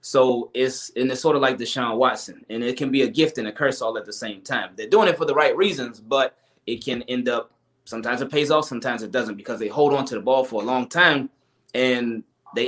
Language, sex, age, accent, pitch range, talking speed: English, male, 20-39, American, 120-140 Hz, 265 wpm